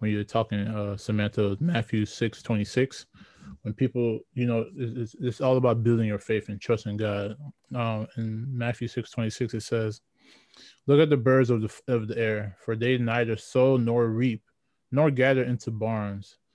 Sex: male